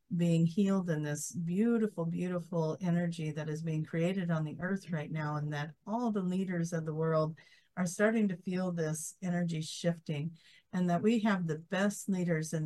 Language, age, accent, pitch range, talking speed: English, 50-69, American, 160-195 Hz, 185 wpm